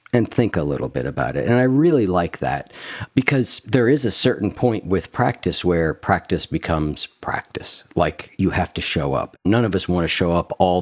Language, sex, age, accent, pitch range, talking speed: English, male, 50-69, American, 85-110 Hz, 210 wpm